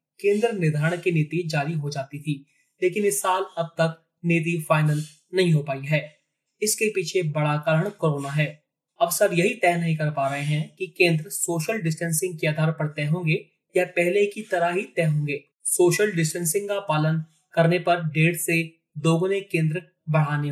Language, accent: Hindi, native